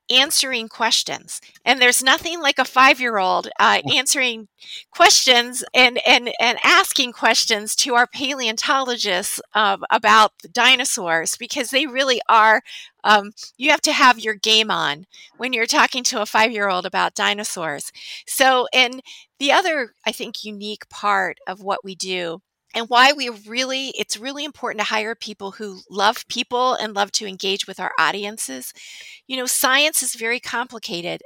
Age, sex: 40-59, female